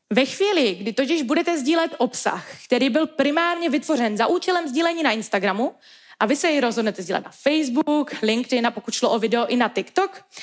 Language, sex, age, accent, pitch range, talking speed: Czech, female, 20-39, native, 220-310 Hz, 190 wpm